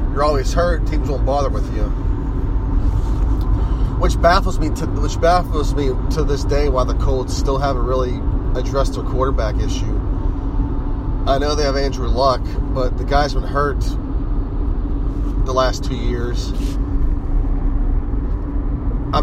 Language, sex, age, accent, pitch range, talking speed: English, male, 30-49, American, 95-130 Hz, 135 wpm